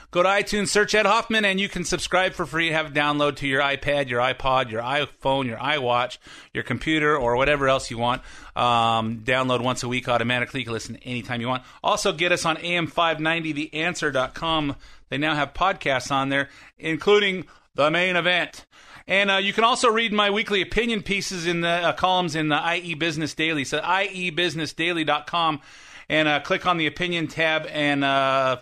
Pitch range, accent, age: 140-180 Hz, American, 30-49